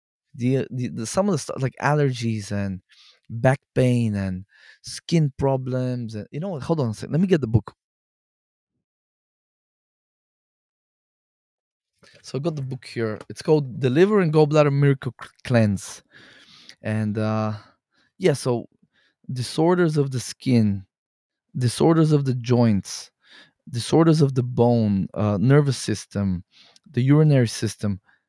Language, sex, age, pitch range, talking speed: English, male, 20-39, 110-150 Hz, 140 wpm